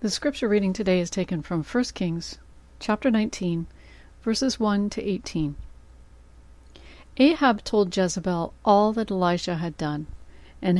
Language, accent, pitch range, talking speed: English, American, 155-205 Hz, 135 wpm